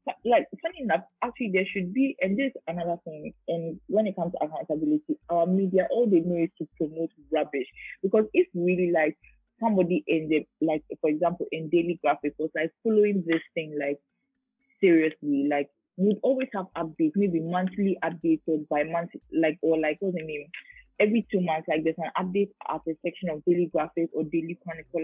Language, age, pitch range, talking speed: English, 20-39, 165-220 Hz, 190 wpm